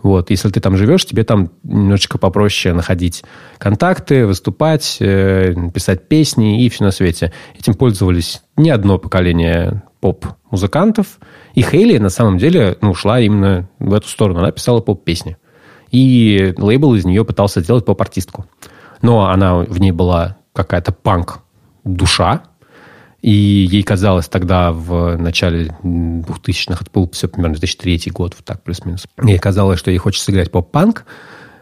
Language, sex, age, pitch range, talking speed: Russian, male, 20-39, 95-120 Hz, 140 wpm